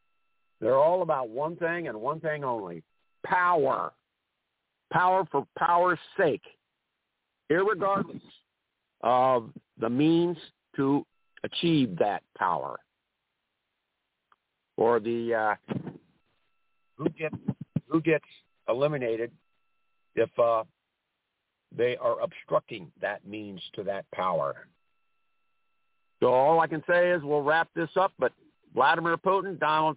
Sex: male